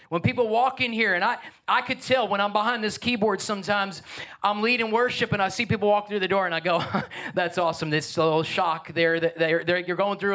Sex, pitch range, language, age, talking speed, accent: male, 180-240 Hz, English, 30-49, 240 wpm, American